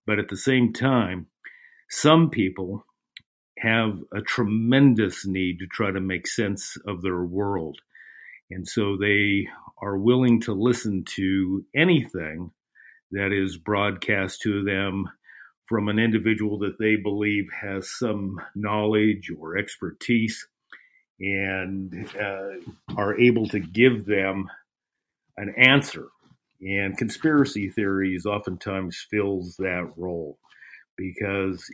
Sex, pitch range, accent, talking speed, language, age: male, 95-110 Hz, American, 115 wpm, English, 50-69